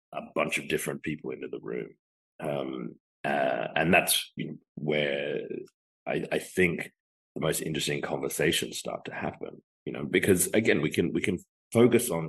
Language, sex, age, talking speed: English, male, 40-59, 160 wpm